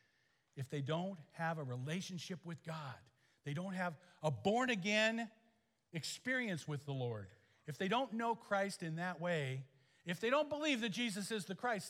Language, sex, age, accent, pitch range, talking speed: English, male, 50-69, American, 125-180 Hz, 170 wpm